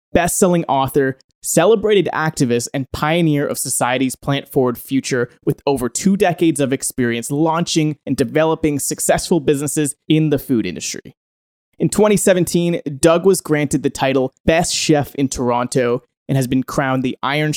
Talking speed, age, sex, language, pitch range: 145 wpm, 20-39, male, English, 130-160 Hz